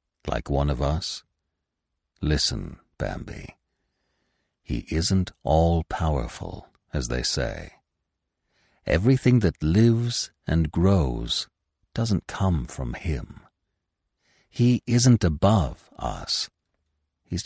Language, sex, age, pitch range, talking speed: English, male, 60-79, 75-95 Hz, 90 wpm